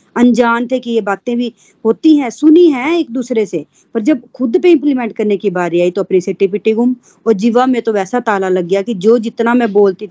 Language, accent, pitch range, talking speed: Hindi, native, 195-255 Hz, 150 wpm